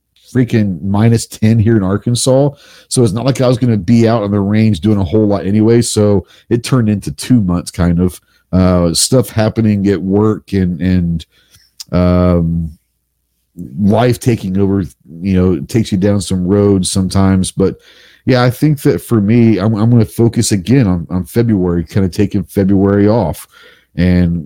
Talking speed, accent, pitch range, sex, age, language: 180 wpm, American, 90-110 Hz, male, 40-59, English